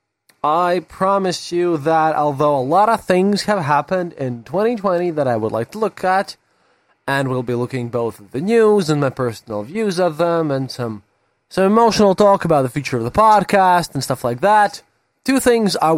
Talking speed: 200 wpm